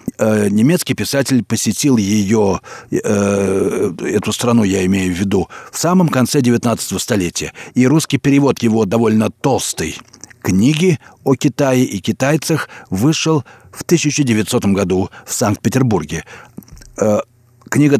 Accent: native